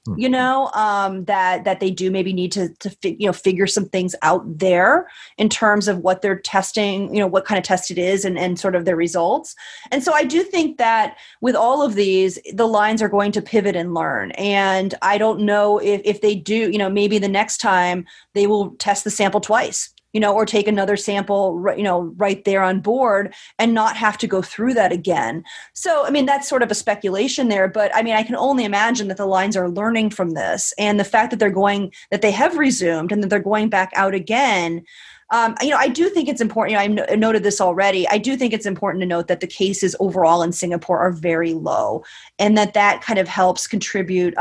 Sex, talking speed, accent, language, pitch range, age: female, 235 wpm, American, English, 185-220 Hz, 30-49